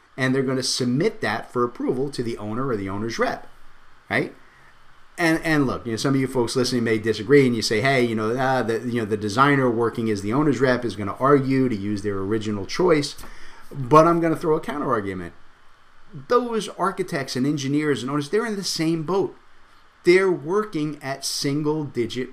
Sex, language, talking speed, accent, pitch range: male, English, 205 wpm, American, 115-150 Hz